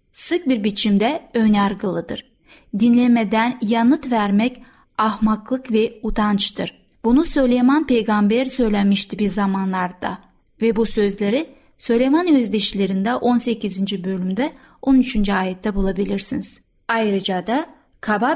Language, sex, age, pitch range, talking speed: Turkish, female, 30-49, 210-270 Hz, 95 wpm